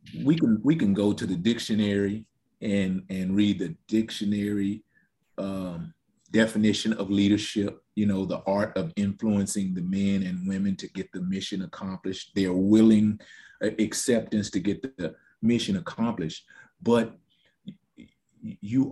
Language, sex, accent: English, male, American